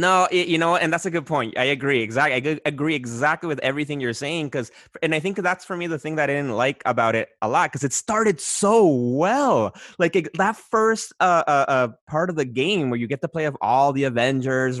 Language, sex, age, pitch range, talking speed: English, male, 20-39, 125-170 Hz, 245 wpm